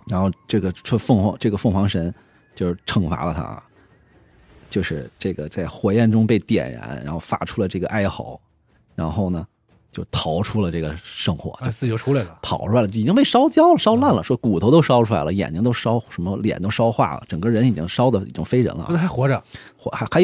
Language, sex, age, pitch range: Chinese, male, 30-49, 95-125 Hz